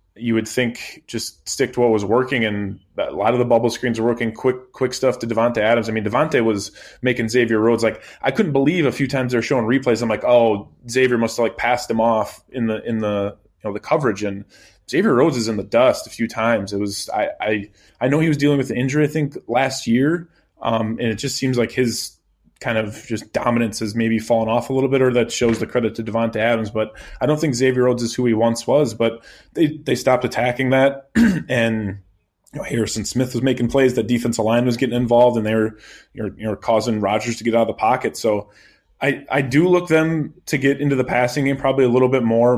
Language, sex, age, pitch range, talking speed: English, male, 20-39, 110-130 Hz, 240 wpm